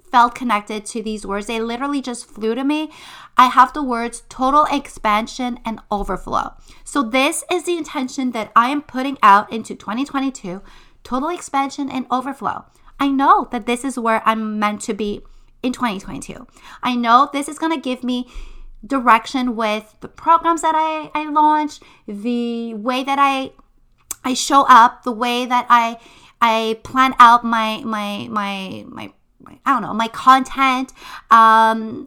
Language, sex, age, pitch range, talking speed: English, female, 30-49, 220-275 Hz, 165 wpm